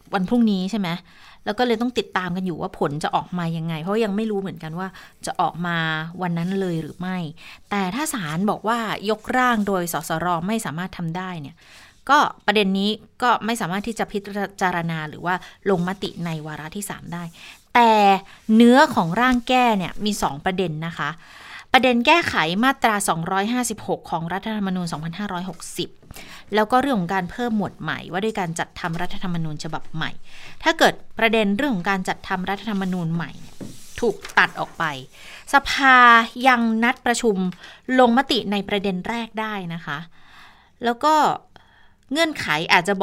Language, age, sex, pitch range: Thai, 20-39, female, 180-225 Hz